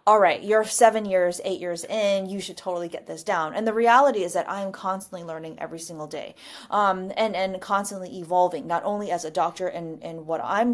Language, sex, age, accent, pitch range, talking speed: English, female, 30-49, American, 180-230 Hz, 225 wpm